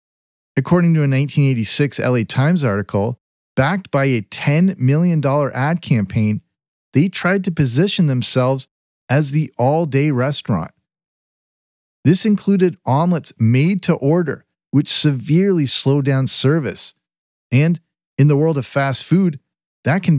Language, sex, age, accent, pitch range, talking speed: English, male, 40-59, American, 130-165 Hz, 130 wpm